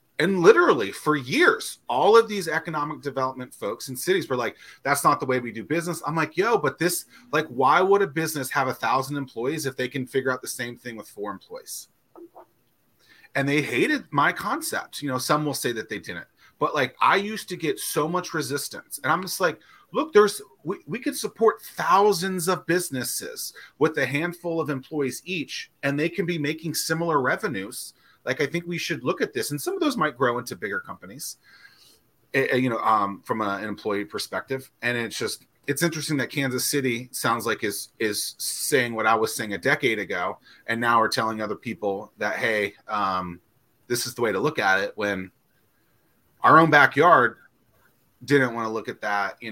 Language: English